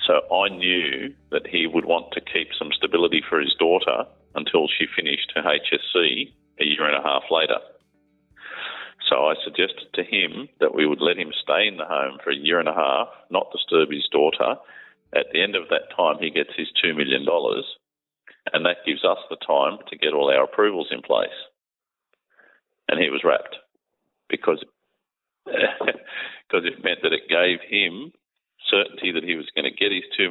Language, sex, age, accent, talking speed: English, male, 40-59, Australian, 185 wpm